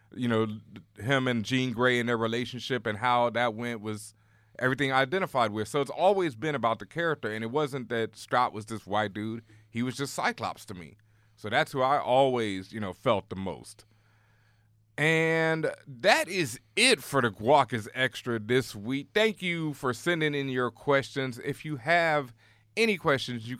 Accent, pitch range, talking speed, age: American, 110-145 Hz, 185 wpm, 30-49